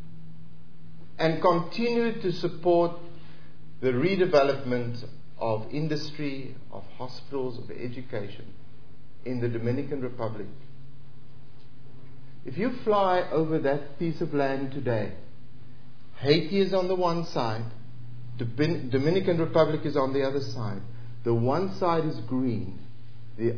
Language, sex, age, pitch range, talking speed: English, male, 50-69, 115-150 Hz, 110 wpm